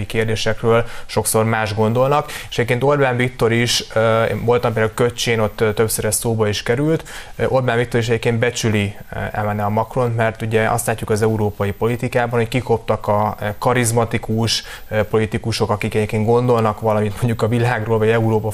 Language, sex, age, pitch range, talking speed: Hungarian, male, 20-39, 110-120 Hz, 155 wpm